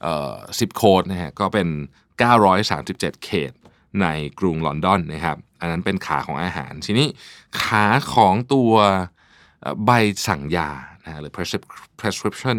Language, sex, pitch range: Thai, male, 85-110 Hz